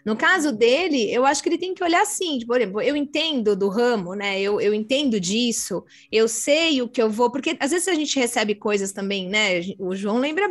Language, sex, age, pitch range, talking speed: Portuguese, female, 20-39, 210-305 Hz, 230 wpm